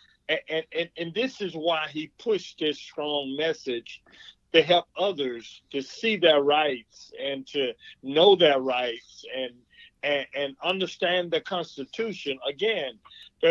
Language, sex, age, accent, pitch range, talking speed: English, male, 50-69, American, 155-215 Hz, 140 wpm